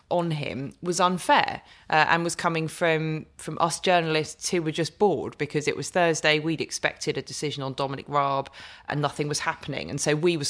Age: 20-39